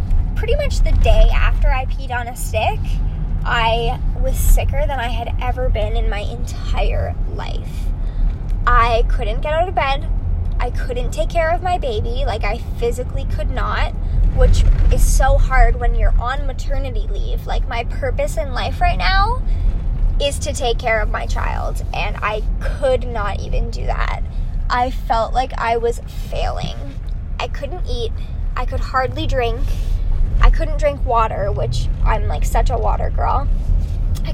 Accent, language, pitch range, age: American, English, 80-95 Hz, 10-29